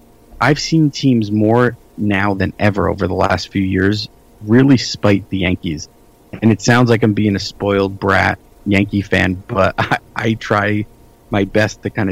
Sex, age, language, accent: male, 30-49, English, American